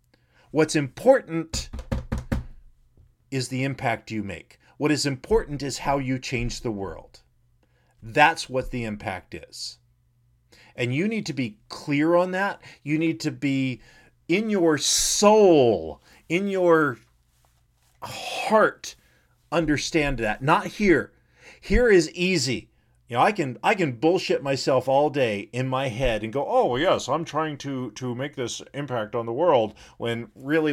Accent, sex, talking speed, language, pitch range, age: American, male, 145 wpm, English, 105-145 Hz, 40-59